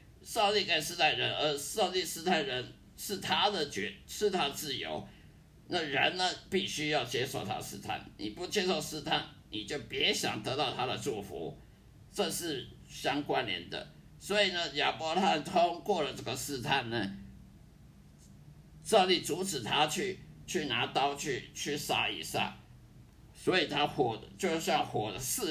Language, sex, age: Chinese, male, 50-69